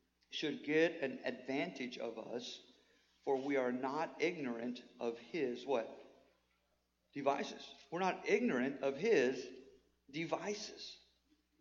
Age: 50-69